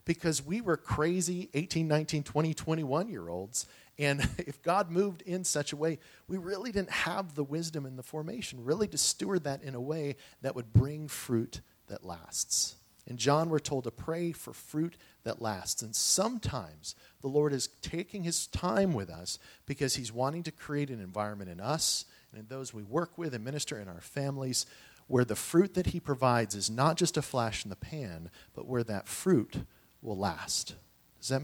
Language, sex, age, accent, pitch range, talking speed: English, male, 40-59, American, 120-170 Hz, 190 wpm